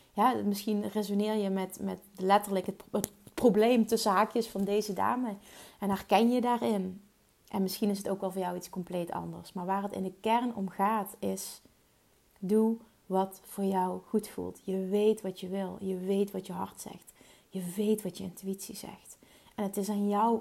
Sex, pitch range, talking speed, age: female, 190-215 Hz, 195 wpm, 30-49